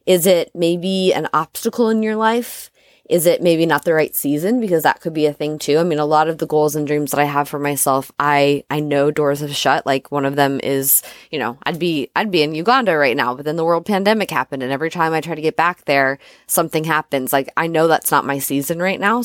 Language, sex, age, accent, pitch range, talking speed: English, female, 20-39, American, 140-175 Hz, 260 wpm